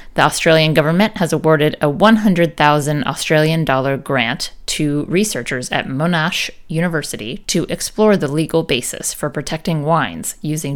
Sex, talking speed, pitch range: female, 135 wpm, 150-185 Hz